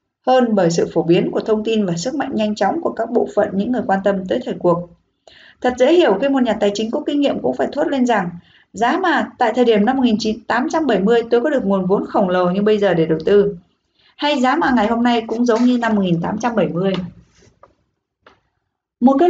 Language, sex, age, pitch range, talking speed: Vietnamese, female, 20-39, 195-265 Hz, 225 wpm